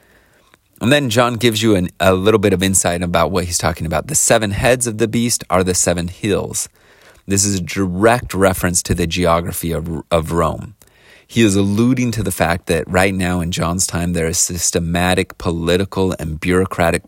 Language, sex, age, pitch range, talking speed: English, male, 30-49, 85-105 Hz, 190 wpm